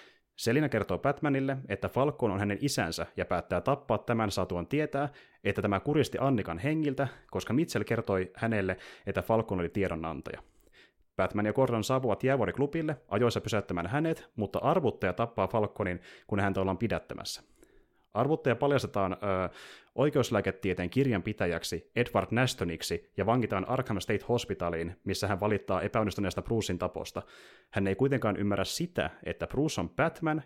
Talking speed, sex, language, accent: 140 wpm, male, Finnish, native